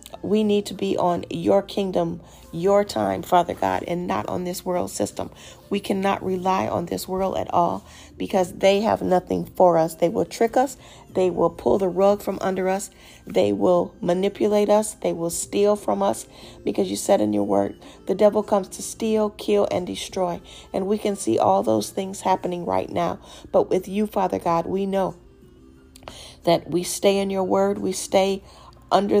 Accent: American